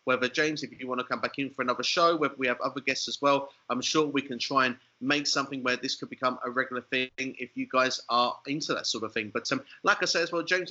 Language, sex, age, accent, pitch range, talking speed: English, male, 30-49, British, 130-160 Hz, 285 wpm